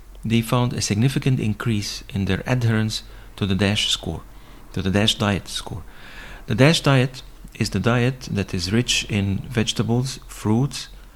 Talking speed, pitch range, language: 155 wpm, 100-125 Hz, English